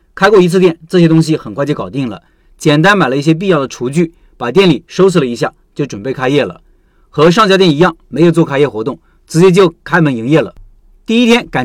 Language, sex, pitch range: Chinese, male, 155-195 Hz